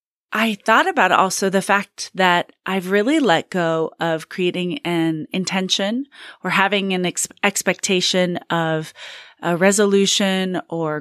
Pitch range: 175-230 Hz